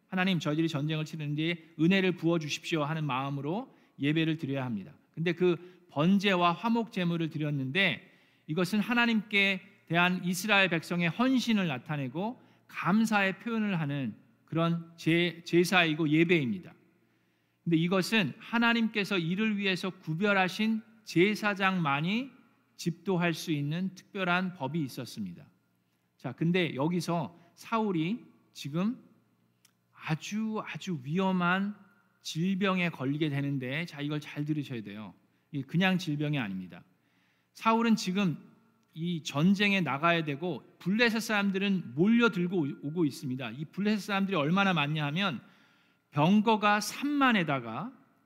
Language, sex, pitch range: Korean, male, 155-200 Hz